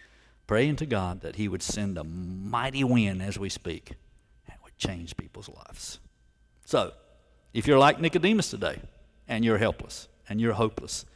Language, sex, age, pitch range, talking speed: English, male, 60-79, 85-120 Hz, 160 wpm